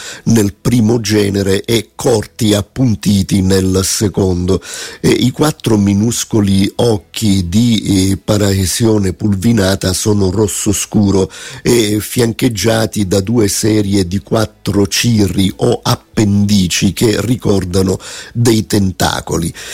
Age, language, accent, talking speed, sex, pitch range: 50-69, Italian, native, 100 wpm, male, 100-115 Hz